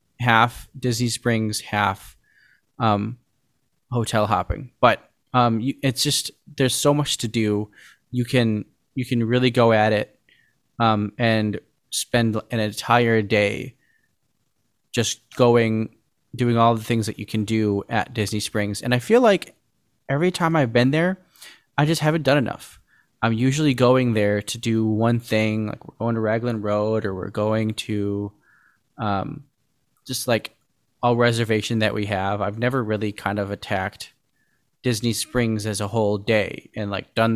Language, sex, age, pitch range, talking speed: English, male, 20-39, 105-125 Hz, 160 wpm